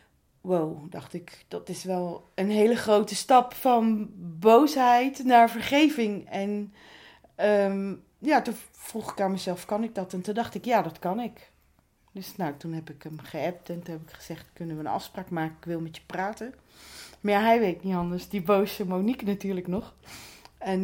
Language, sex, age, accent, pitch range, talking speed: Dutch, female, 40-59, Dutch, 170-205 Hz, 195 wpm